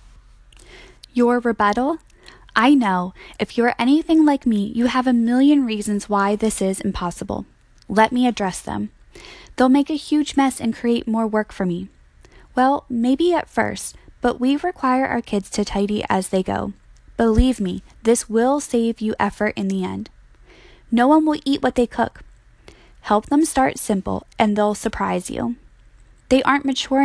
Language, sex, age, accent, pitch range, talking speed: English, female, 10-29, American, 200-255 Hz, 165 wpm